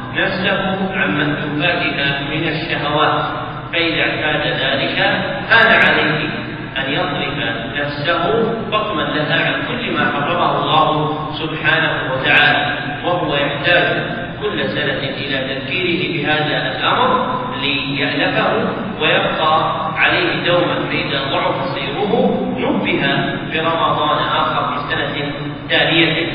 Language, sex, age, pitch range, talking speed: Arabic, male, 40-59, 140-160 Hz, 100 wpm